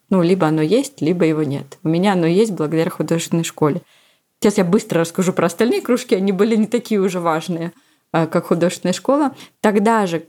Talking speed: 185 wpm